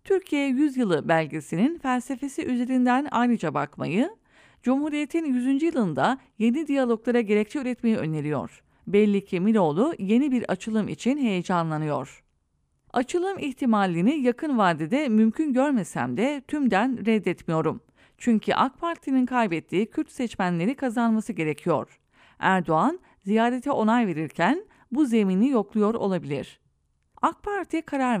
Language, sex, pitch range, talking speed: English, female, 185-265 Hz, 110 wpm